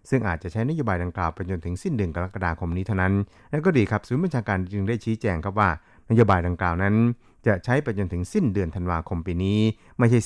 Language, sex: Thai, male